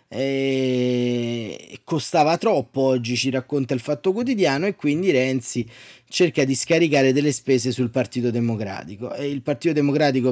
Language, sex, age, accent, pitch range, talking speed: Italian, male, 20-39, native, 120-150 Hz, 140 wpm